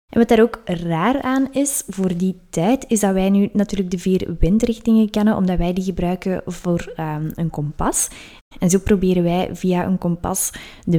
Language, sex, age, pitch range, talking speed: Dutch, female, 20-39, 175-225 Hz, 185 wpm